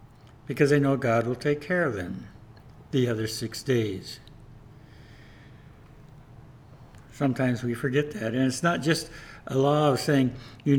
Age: 60-79